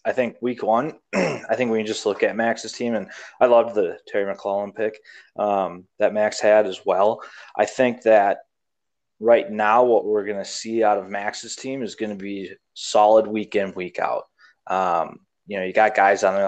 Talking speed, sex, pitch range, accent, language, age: 210 wpm, male, 100-120 Hz, American, English, 20-39